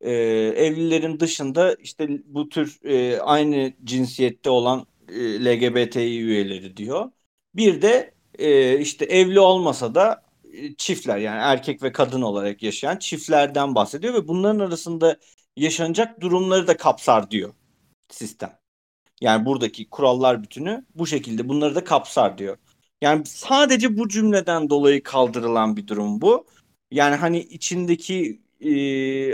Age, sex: 50-69, male